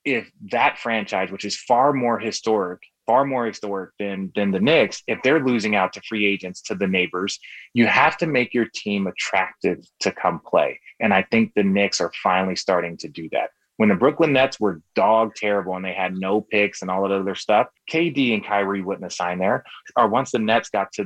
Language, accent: English, American